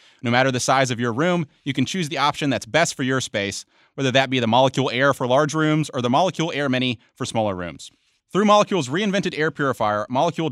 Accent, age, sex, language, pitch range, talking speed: American, 30-49, male, English, 125-165 Hz, 230 wpm